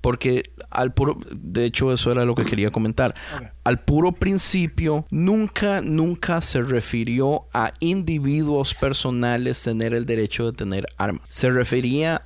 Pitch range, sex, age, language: 115-140 Hz, male, 30-49, Spanish